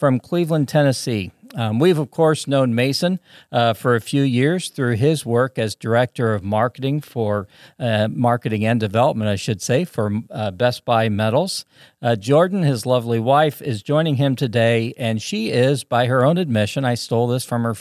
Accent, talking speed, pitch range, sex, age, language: American, 180 wpm, 110-140 Hz, male, 50-69, English